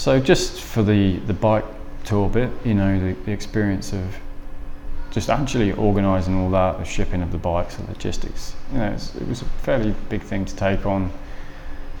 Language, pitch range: English, 75-100 Hz